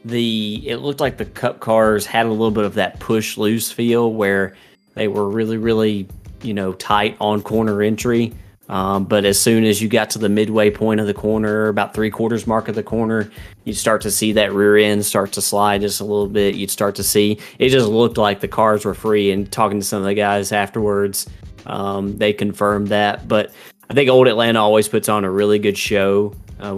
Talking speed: 225 wpm